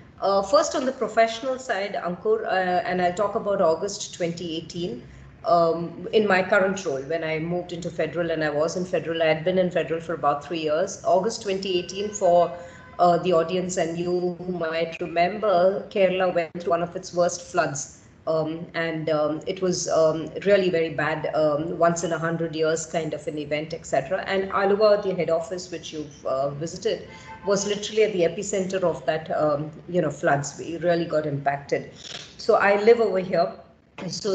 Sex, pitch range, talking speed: female, 160-190 Hz, 185 wpm